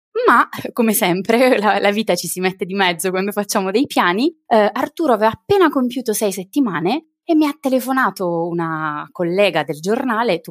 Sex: female